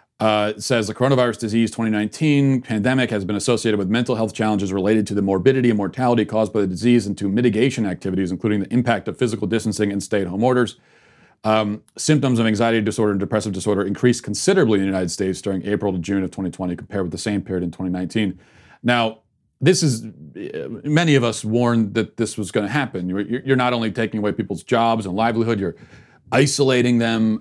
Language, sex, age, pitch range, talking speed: English, male, 40-59, 105-130 Hz, 195 wpm